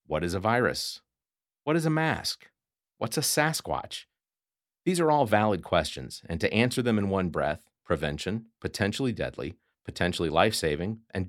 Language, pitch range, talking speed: English, 85-120 Hz, 155 wpm